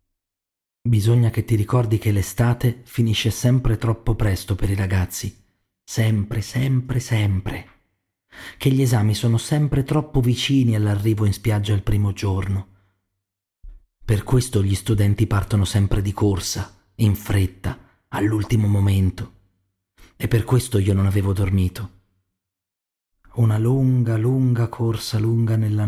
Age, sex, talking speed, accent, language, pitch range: 40-59, male, 125 wpm, native, Italian, 95-125 Hz